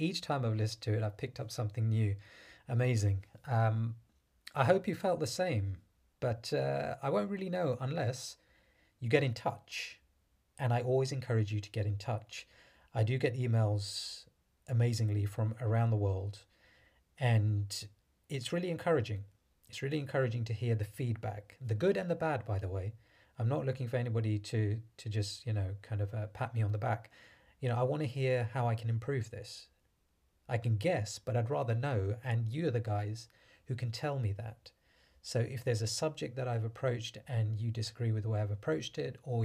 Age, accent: 30-49, British